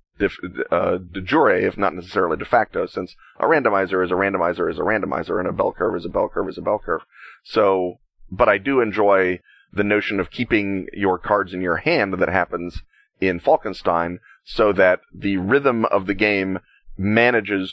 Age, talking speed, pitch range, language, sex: 30-49, 185 wpm, 90-100 Hz, English, male